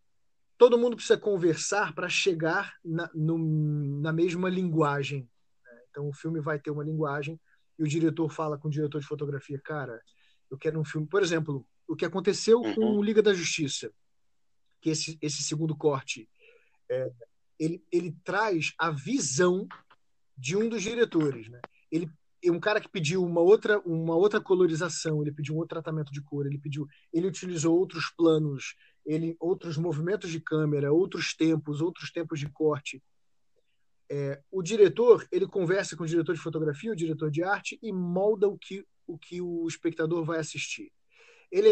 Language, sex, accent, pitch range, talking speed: Portuguese, male, Brazilian, 155-200 Hz, 170 wpm